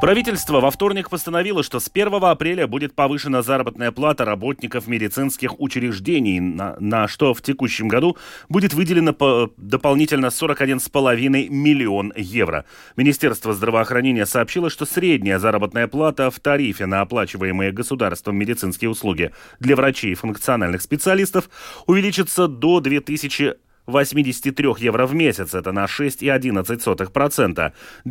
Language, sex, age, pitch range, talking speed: Russian, male, 30-49, 115-160 Hz, 125 wpm